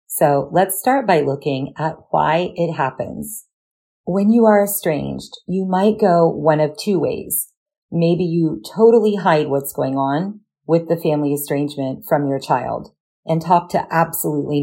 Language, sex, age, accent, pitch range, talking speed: English, female, 40-59, American, 150-195 Hz, 155 wpm